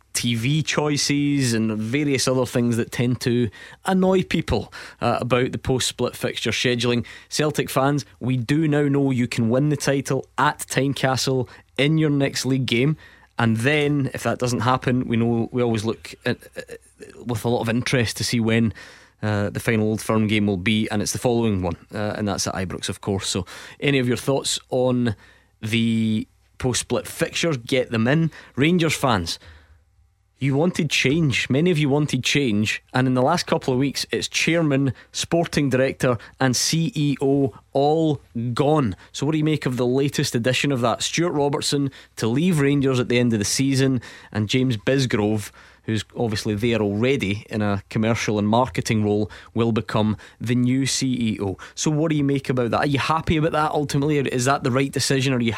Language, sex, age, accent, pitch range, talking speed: English, male, 20-39, British, 110-140 Hz, 190 wpm